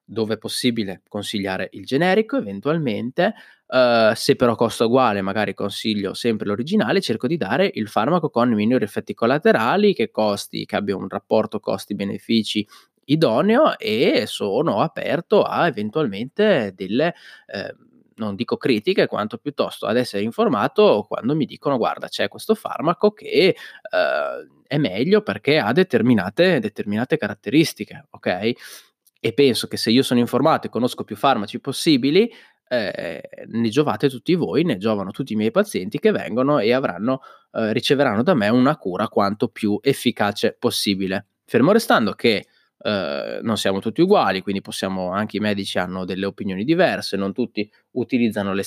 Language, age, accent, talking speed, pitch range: Italian, 20-39, native, 155 wpm, 100-145 Hz